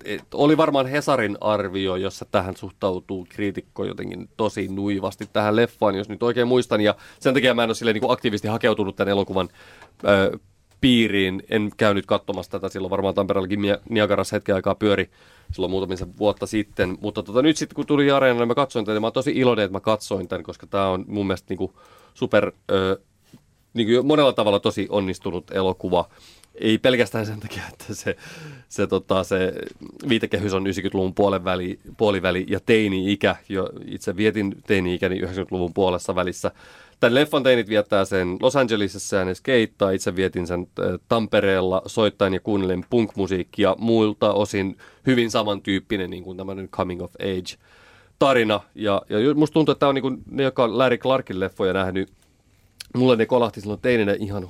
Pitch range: 95-115 Hz